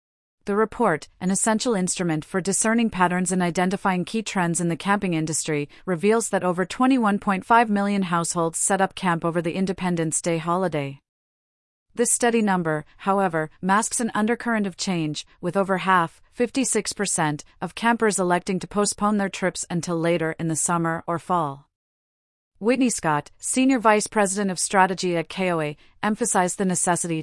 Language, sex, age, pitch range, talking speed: English, female, 40-59, 165-205 Hz, 150 wpm